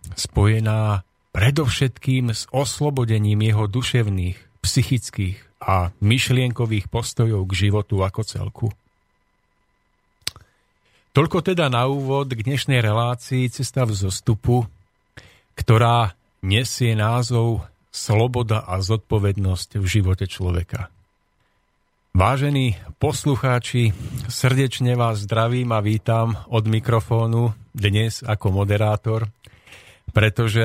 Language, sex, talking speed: Slovak, male, 90 wpm